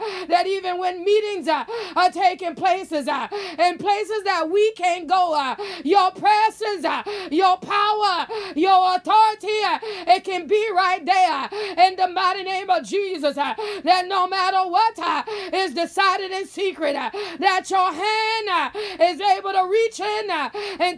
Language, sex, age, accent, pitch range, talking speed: English, female, 30-49, American, 360-405 Hz, 160 wpm